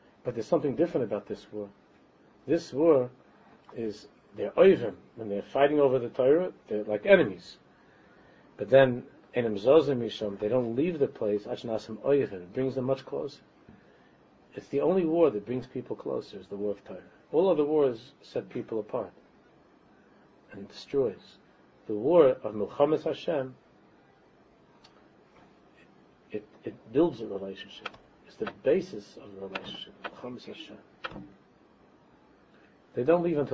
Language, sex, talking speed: English, male, 120 wpm